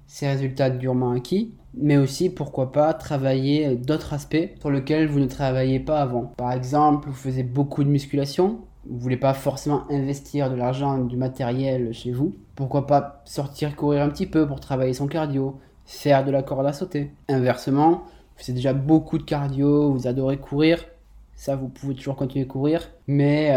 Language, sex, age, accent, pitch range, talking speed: French, male, 20-39, French, 130-145 Hz, 185 wpm